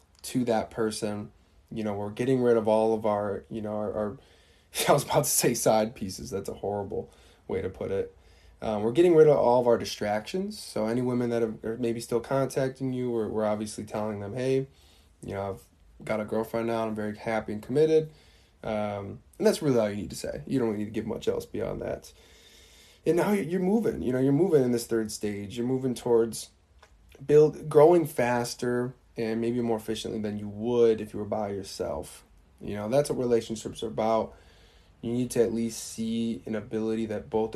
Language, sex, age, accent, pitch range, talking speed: English, male, 20-39, American, 105-120 Hz, 215 wpm